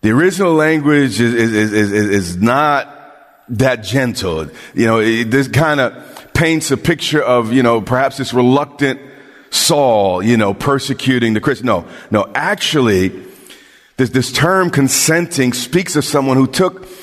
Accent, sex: American, male